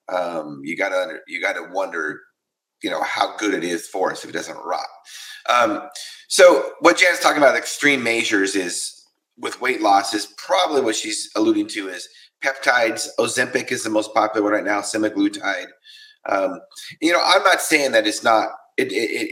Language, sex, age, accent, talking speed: English, male, 30-49, American, 180 wpm